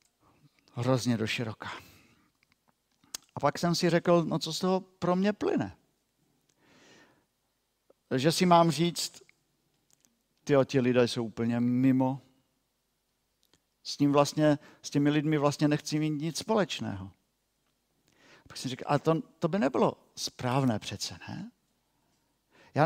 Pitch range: 130-180 Hz